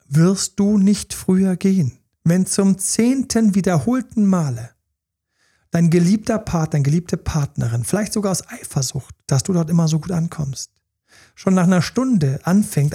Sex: male